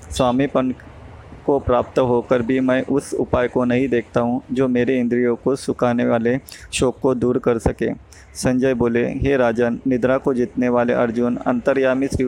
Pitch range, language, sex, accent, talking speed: 120-130 Hz, Hindi, male, native, 160 wpm